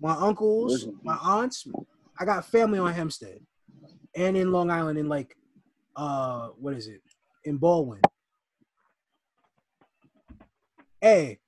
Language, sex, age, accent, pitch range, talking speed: English, male, 20-39, American, 180-270 Hz, 115 wpm